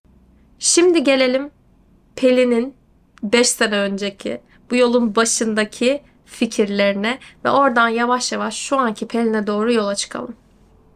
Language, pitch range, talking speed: Turkish, 220-290 Hz, 110 wpm